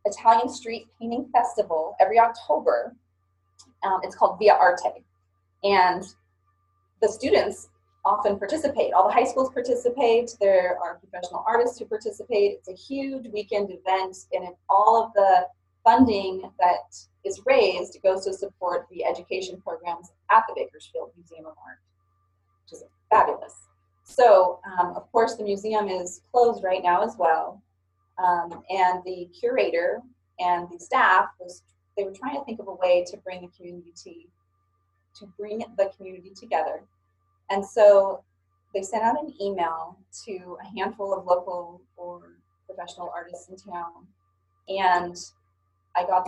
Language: English